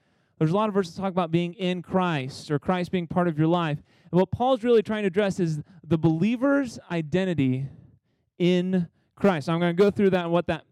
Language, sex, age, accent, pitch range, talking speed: English, male, 30-49, American, 155-190 Hz, 225 wpm